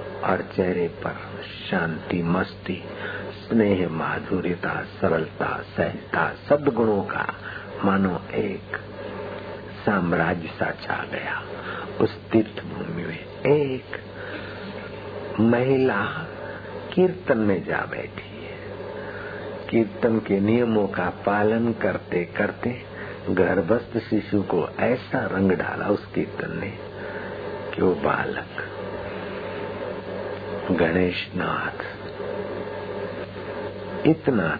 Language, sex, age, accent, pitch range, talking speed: Hindi, male, 60-79, native, 95-110 Hz, 80 wpm